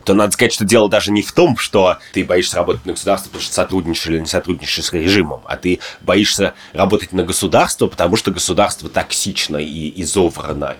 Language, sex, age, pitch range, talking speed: Russian, male, 30-49, 90-115 Hz, 195 wpm